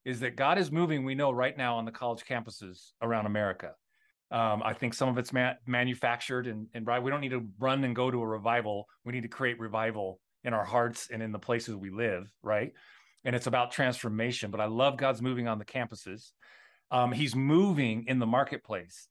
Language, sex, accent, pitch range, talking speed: English, male, American, 115-150 Hz, 210 wpm